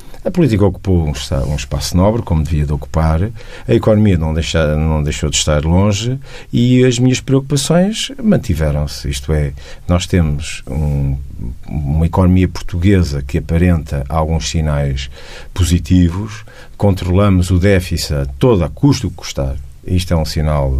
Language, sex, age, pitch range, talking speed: Portuguese, male, 50-69, 85-115 Hz, 145 wpm